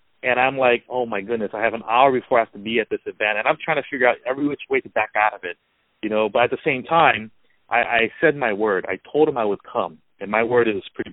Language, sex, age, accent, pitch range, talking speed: English, male, 30-49, American, 120-160 Hz, 295 wpm